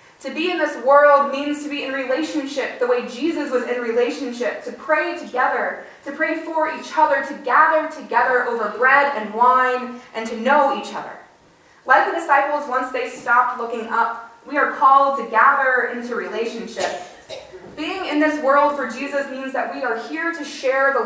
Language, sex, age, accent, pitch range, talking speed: English, female, 20-39, American, 235-280 Hz, 185 wpm